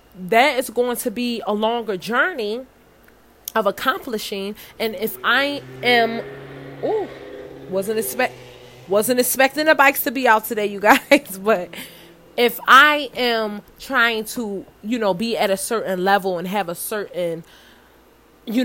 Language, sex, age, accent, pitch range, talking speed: English, female, 20-39, American, 195-240 Hz, 145 wpm